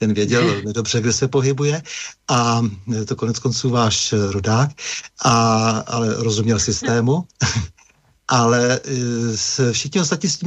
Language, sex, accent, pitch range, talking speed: Czech, male, native, 115-135 Hz, 130 wpm